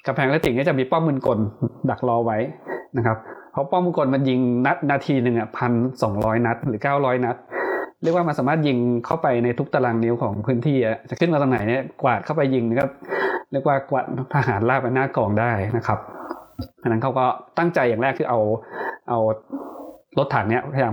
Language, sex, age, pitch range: Thai, male, 20-39, 115-140 Hz